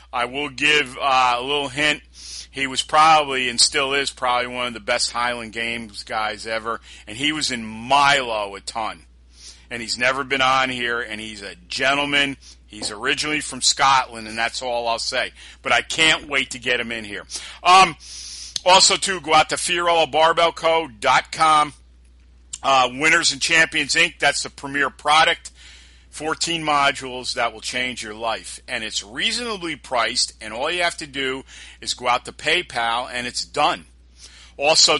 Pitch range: 110-145 Hz